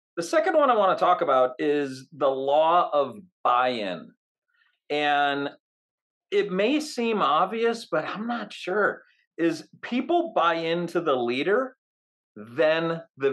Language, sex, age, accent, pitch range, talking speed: English, male, 40-59, American, 145-235 Hz, 135 wpm